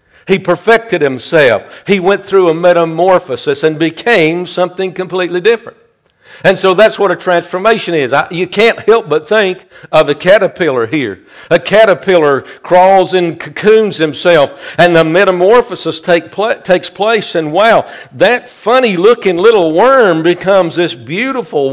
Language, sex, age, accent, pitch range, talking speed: English, male, 60-79, American, 170-220 Hz, 140 wpm